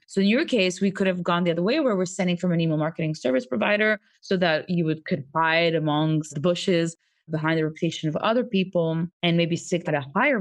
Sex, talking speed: female, 235 wpm